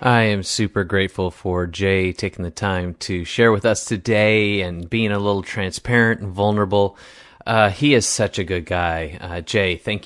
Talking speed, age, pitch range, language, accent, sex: 185 wpm, 30-49, 90-115 Hz, English, American, male